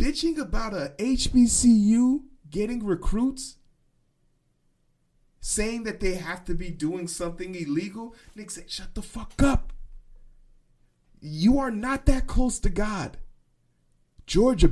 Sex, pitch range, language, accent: male, 145-225 Hz, English, American